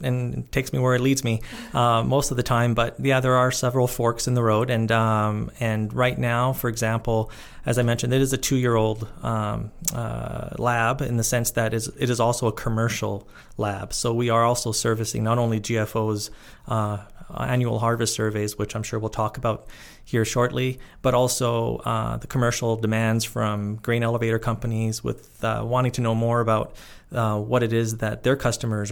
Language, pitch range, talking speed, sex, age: English, 110-125 Hz, 195 wpm, male, 30-49